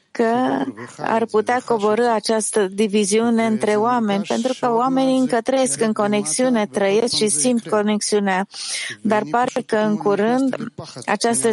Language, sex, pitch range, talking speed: English, female, 200-235 Hz, 130 wpm